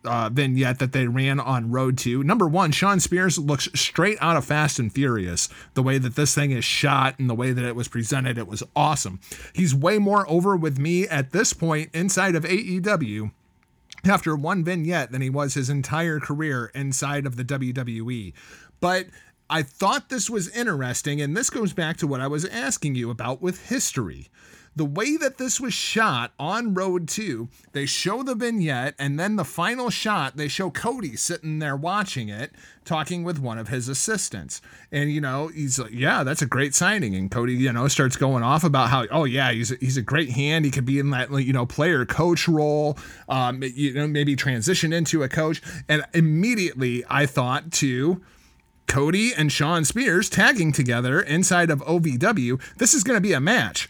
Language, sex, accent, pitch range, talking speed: English, male, American, 130-175 Hz, 195 wpm